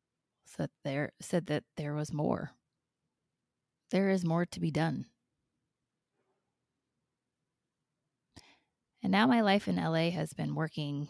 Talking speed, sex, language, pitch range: 120 wpm, female, English, 145-175 Hz